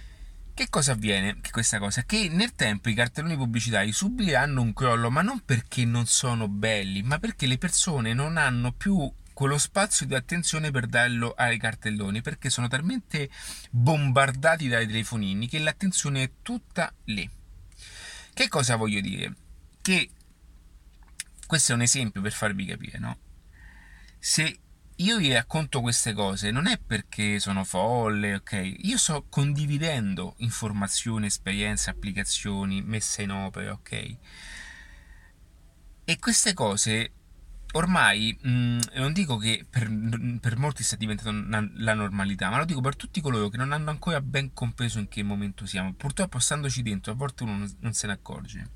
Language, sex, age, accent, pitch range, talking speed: Italian, male, 30-49, native, 100-145 Hz, 150 wpm